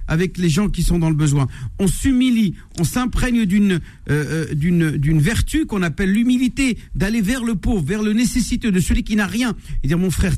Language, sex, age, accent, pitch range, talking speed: French, male, 50-69, French, 135-195 Hz, 210 wpm